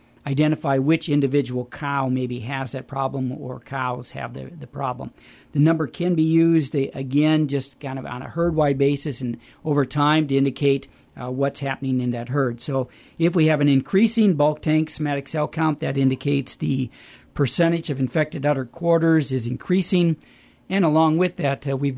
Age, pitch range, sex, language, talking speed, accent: 50-69, 135-155 Hz, male, English, 175 wpm, American